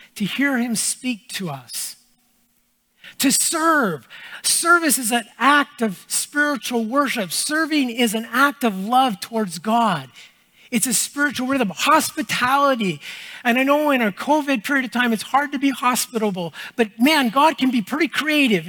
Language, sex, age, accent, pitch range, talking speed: English, male, 50-69, American, 195-260 Hz, 155 wpm